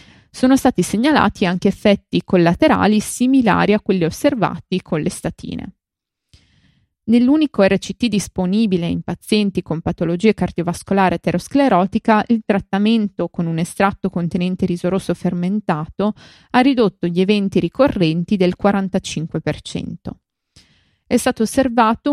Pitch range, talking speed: 175-220 Hz, 110 wpm